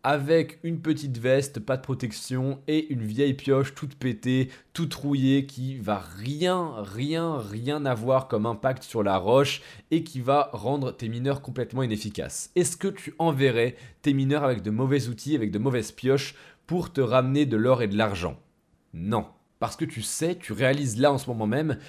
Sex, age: male, 20-39